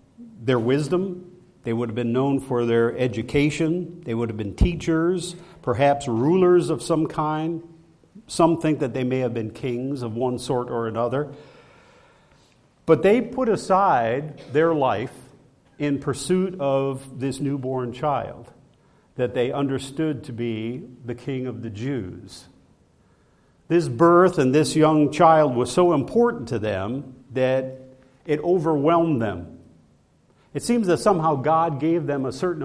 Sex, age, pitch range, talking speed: male, 50-69, 120-160 Hz, 145 wpm